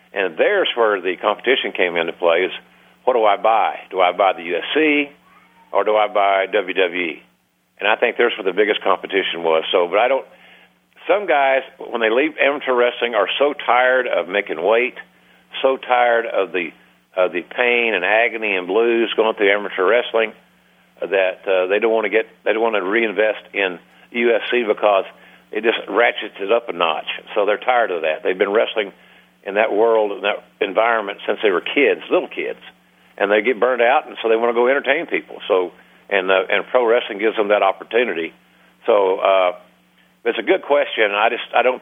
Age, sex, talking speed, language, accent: 50-69, male, 200 wpm, English, American